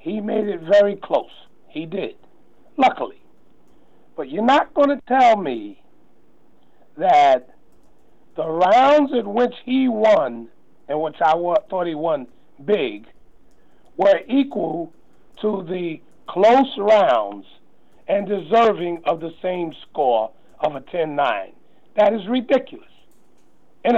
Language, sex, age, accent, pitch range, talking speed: English, male, 50-69, American, 185-255 Hz, 120 wpm